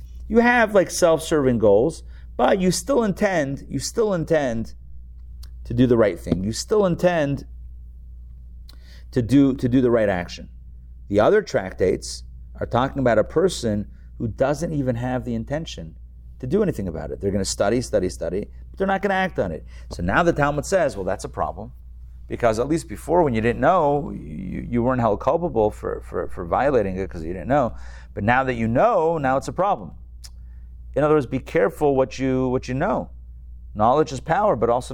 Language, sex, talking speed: English, male, 195 wpm